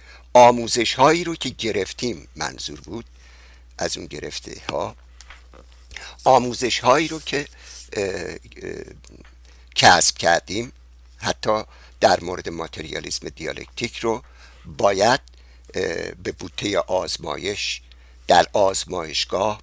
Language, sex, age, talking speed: Persian, male, 60-79, 95 wpm